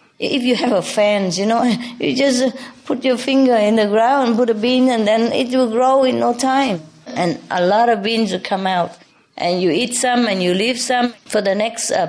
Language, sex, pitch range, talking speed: English, female, 180-245 Hz, 230 wpm